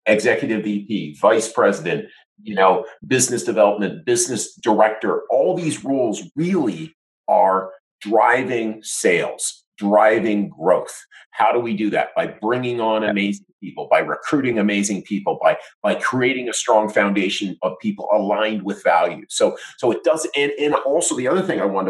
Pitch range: 105-135 Hz